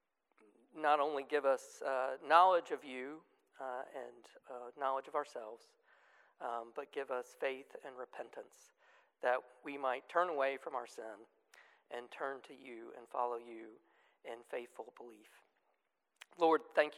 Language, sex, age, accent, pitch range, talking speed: English, male, 40-59, American, 125-155 Hz, 145 wpm